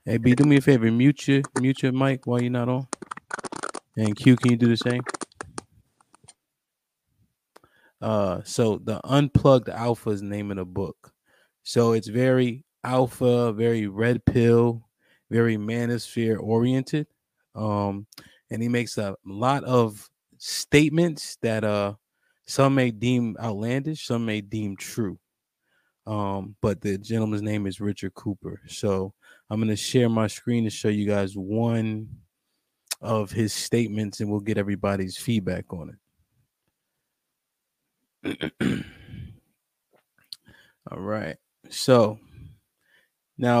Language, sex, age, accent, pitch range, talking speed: English, male, 20-39, American, 105-125 Hz, 130 wpm